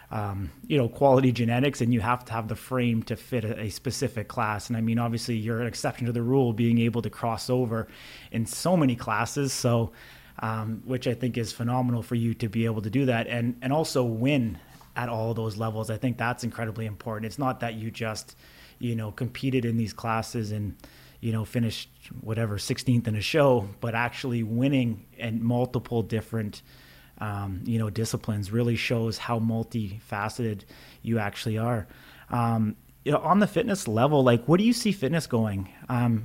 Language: English